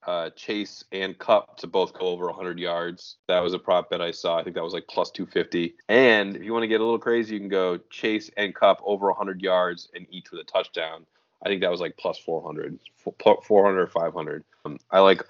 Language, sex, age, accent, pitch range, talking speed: English, male, 30-49, American, 90-130 Hz, 245 wpm